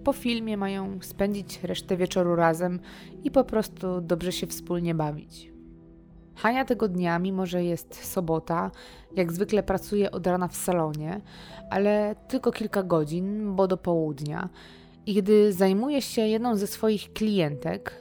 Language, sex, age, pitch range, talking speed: Polish, female, 20-39, 170-210 Hz, 145 wpm